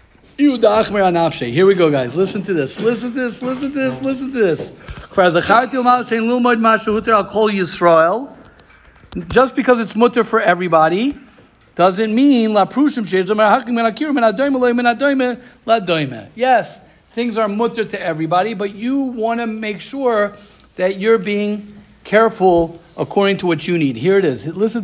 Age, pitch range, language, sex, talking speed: 50-69, 195-245 Hz, English, male, 125 wpm